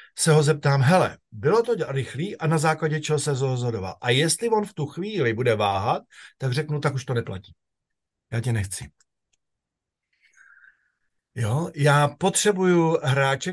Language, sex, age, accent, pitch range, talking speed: Czech, male, 50-69, native, 120-160 Hz, 155 wpm